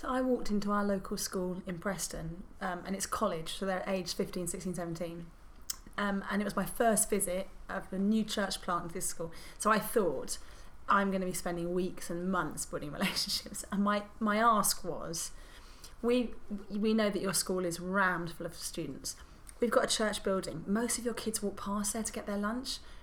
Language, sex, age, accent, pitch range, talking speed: English, female, 30-49, British, 195-255 Hz, 205 wpm